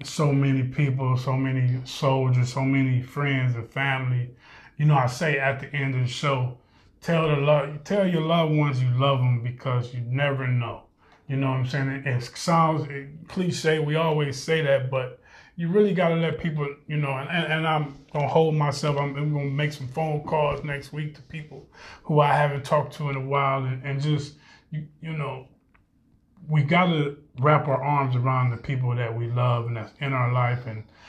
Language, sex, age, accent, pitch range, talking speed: English, male, 20-39, American, 125-145 Hz, 200 wpm